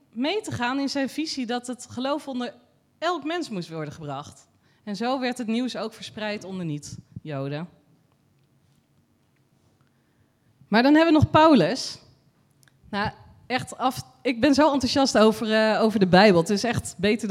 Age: 20-39